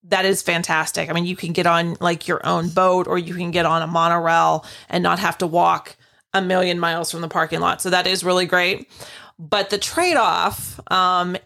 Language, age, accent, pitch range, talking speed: English, 30-49, American, 170-190 Hz, 215 wpm